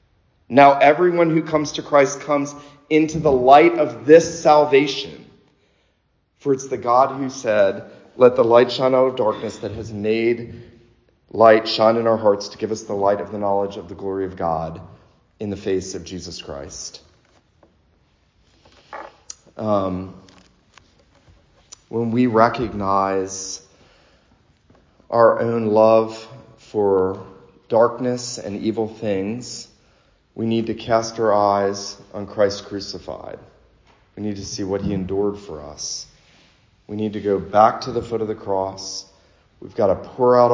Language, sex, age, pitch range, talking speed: English, male, 40-59, 95-115 Hz, 145 wpm